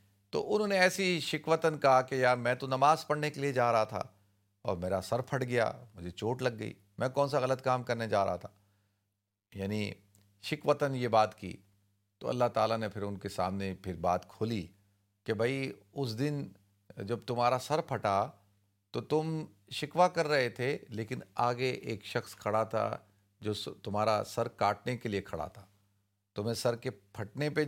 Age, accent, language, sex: 40-59, Indian, English, male